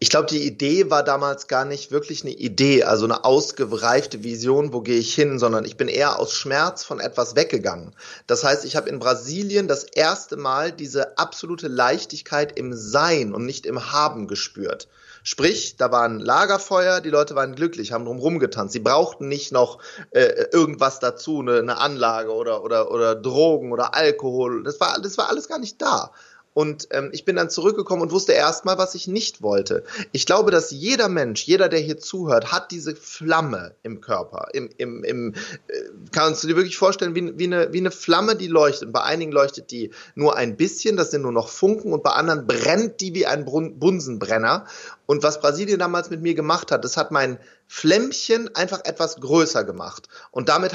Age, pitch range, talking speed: 30-49, 135-185 Hz, 190 wpm